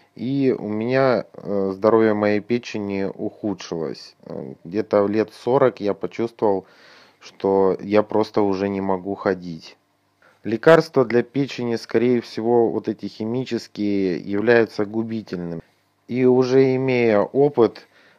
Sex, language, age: male, Russian, 30-49